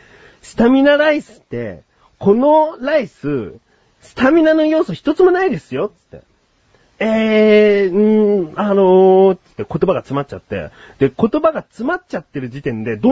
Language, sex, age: Japanese, male, 40-59